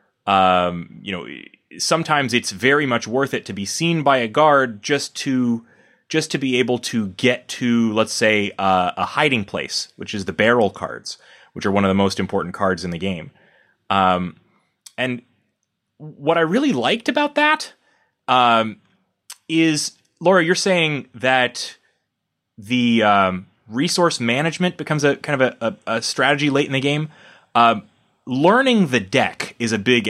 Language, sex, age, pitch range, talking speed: English, male, 30-49, 105-155 Hz, 165 wpm